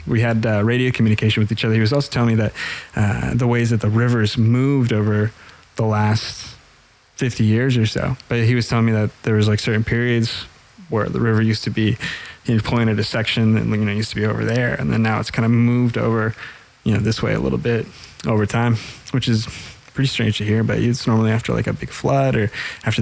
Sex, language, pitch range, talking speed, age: male, English, 110-120 Hz, 240 wpm, 20-39